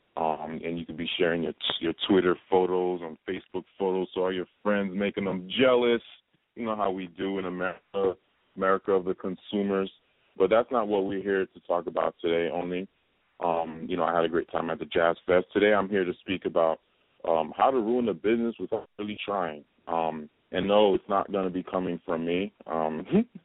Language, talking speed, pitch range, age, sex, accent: English, 210 wpm, 90-100 Hz, 20-39, male, American